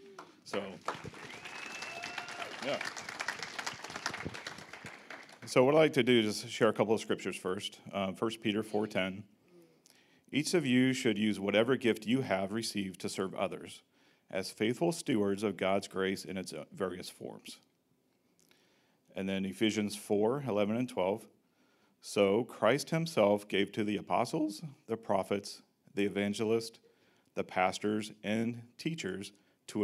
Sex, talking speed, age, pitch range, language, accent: male, 130 wpm, 40-59, 100-120 Hz, English, American